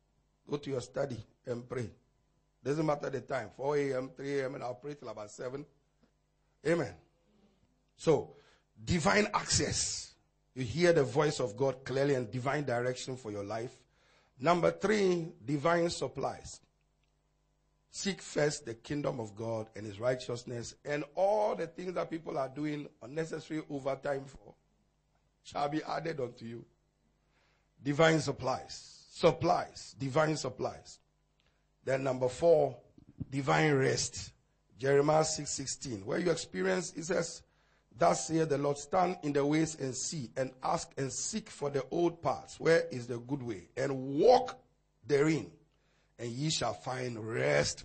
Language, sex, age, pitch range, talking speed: English, male, 50-69, 125-160 Hz, 140 wpm